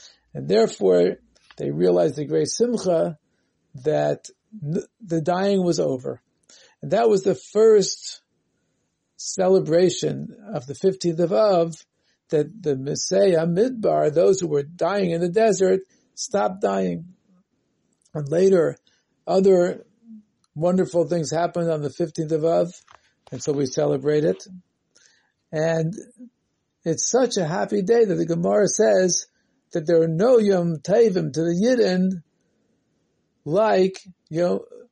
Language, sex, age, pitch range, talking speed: English, male, 50-69, 165-210 Hz, 125 wpm